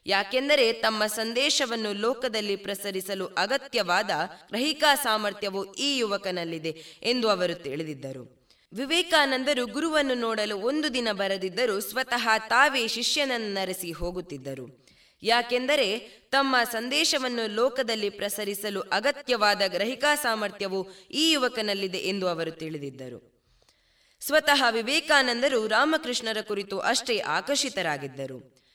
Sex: female